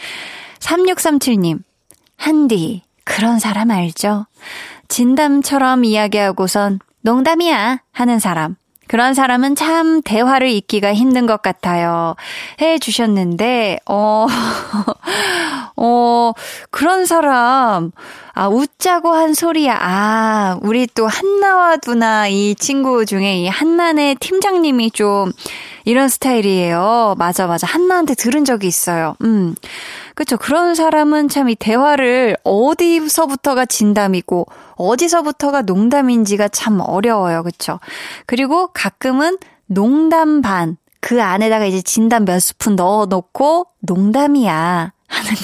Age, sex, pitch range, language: 20-39, female, 205-290 Hz, Korean